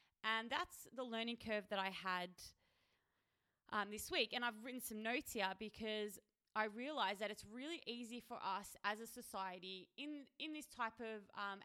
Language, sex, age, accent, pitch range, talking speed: English, female, 20-39, Australian, 195-230 Hz, 180 wpm